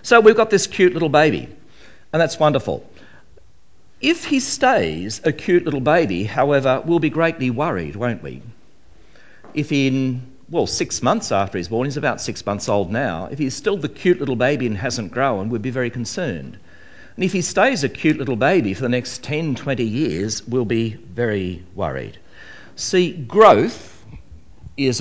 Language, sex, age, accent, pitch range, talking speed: English, male, 60-79, Australian, 115-155 Hz, 175 wpm